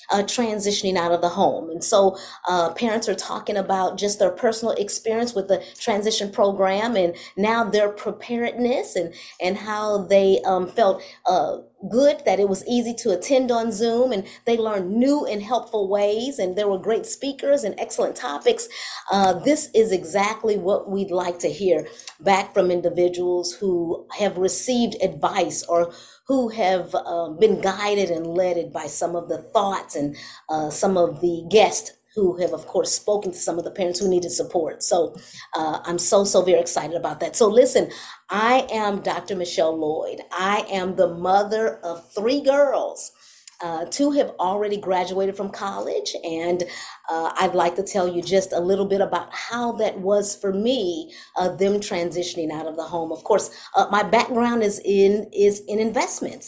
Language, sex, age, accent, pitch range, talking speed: English, female, 30-49, American, 180-220 Hz, 175 wpm